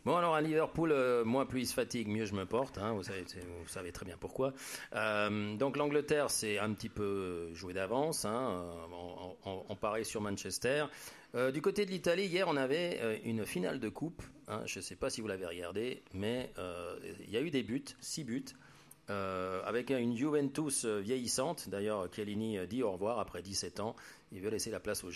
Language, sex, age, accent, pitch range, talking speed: French, male, 40-59, French, 95-125 Hz, 210 wpm